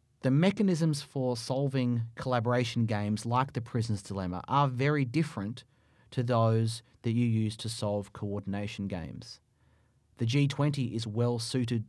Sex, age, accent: male, 30-49, Australian